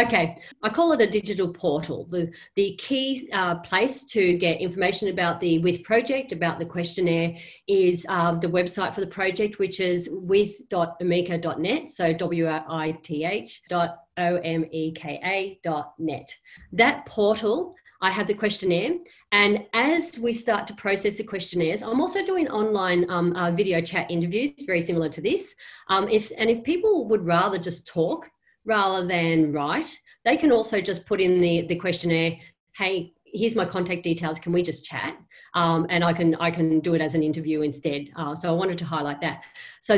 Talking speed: 175 wpm